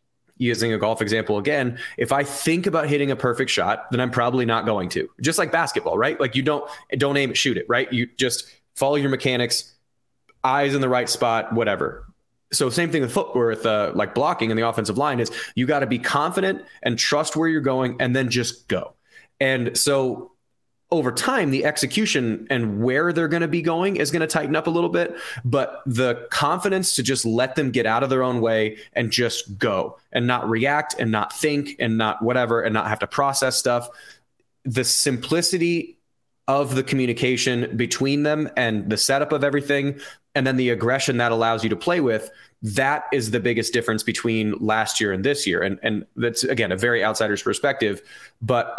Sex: male